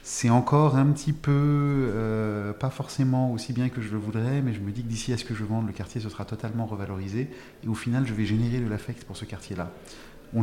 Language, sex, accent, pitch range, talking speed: French, male, French, 100-140 Hz, 245 wpm